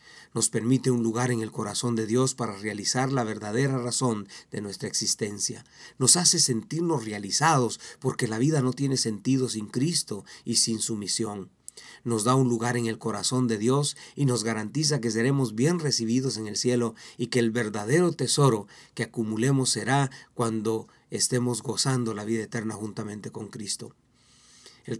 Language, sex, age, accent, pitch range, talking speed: Spanish, male, 40-59, Mexican, 115-135 Hz, 170 wpm